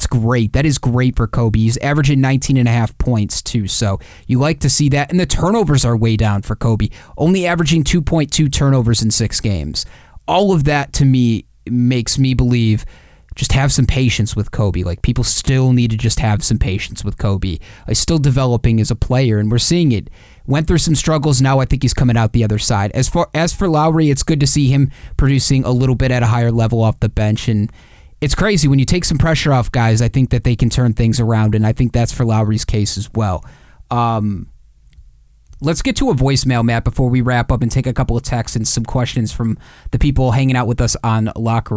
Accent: American